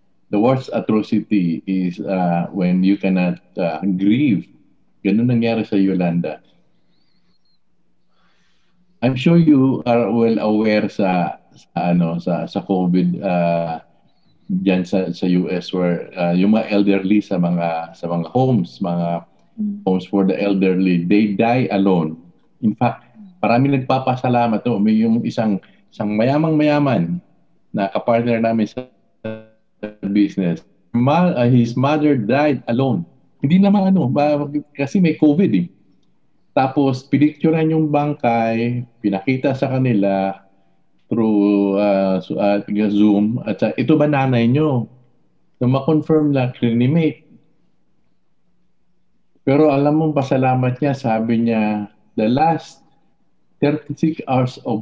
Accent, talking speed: native, 125 wpm